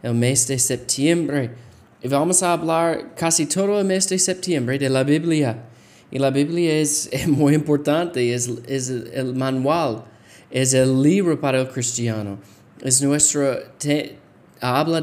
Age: 20-39